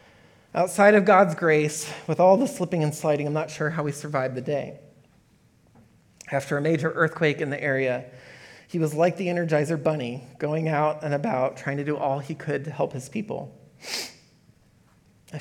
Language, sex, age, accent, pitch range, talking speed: English, male, 30-49, American, 140-175 Hz, 180 wpm